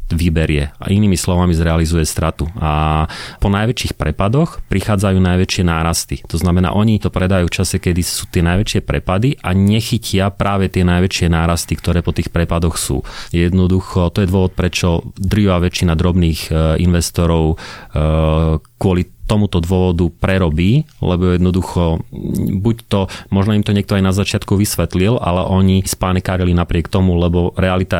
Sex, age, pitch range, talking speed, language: male, 30-49, 80-95 Hz, 150 wpm, Slovak